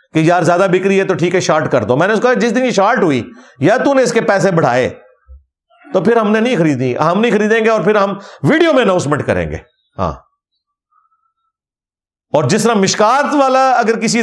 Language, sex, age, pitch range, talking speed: Urdu, male, 50-69, 135-225 Hz, 230 wpm